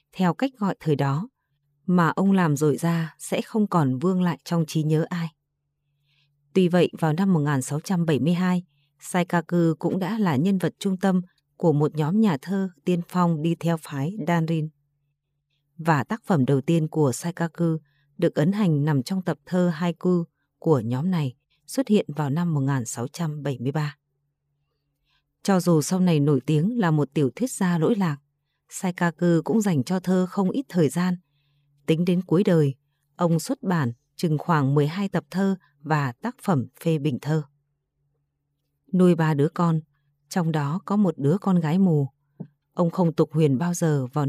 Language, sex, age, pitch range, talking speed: Vietnamese, female, 20-39, 145-180 Hz, 170 wpm